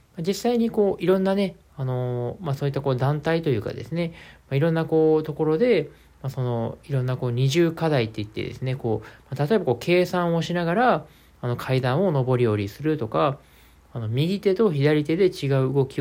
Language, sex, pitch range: Japanese, male, 125-175 Hz